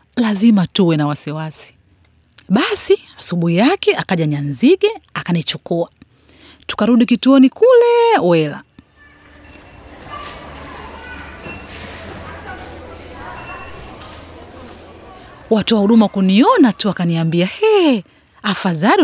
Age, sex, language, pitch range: 30-49, female, Swahili, 160-225 Hz